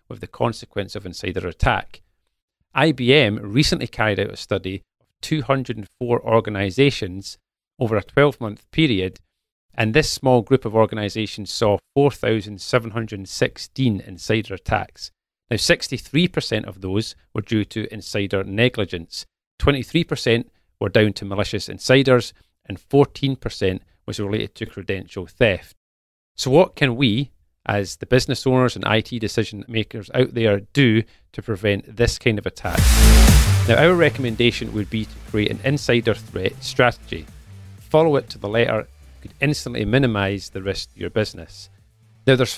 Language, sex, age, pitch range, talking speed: English, male, 40-59, 100-125 Hz, 140 wpm